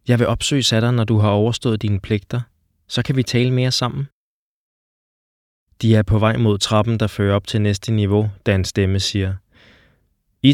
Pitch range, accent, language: 95-110 Hz, native, Danish